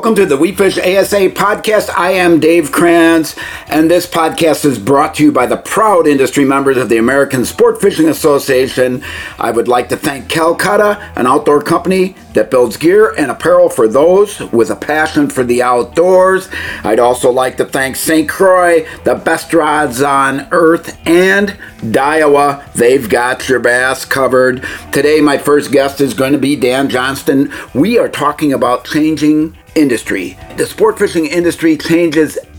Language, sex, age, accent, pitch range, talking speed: English, male, 50-69, American, 125-165 Hz, 170 wpm